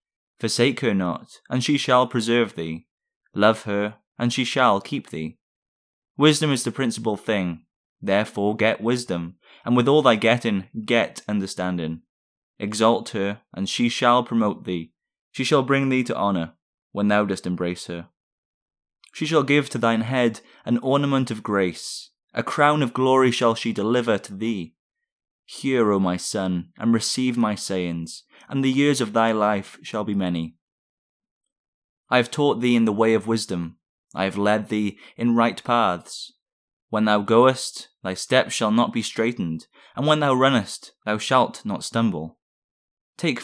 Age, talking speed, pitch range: 20-39, 165 wpm, 100-125 Hz